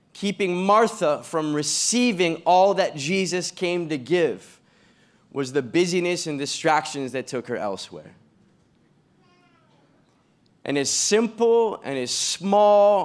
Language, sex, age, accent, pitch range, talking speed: English, male, 20-39, American, 130-185 Hz, 115 wpm